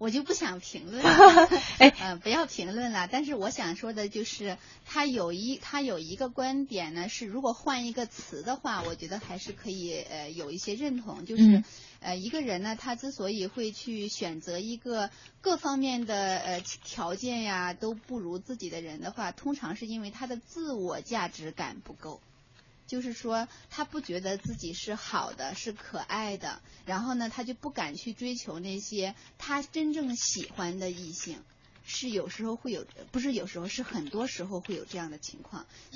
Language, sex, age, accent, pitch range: Chinese, female, 20-39, native, 185-250 Hz